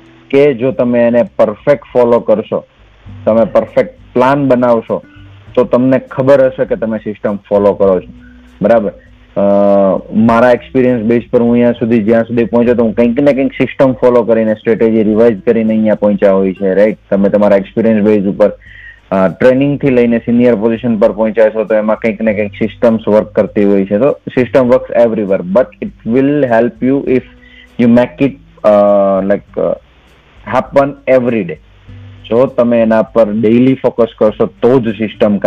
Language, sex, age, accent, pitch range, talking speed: Gujarati, male, 30-49, native, 100-120 Hz, 135 wpm